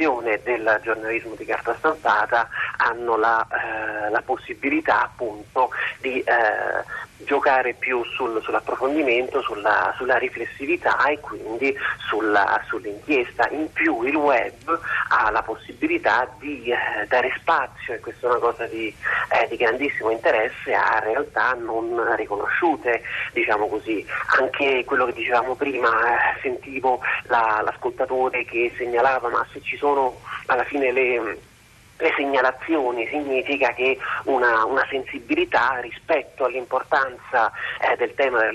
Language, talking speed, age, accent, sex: Italian, 125 wpm, 40-59, native, male